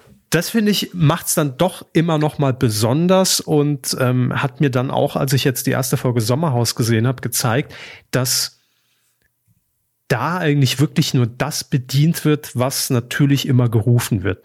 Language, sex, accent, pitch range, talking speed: German, male, German, 125-155 Hz, 165 wpm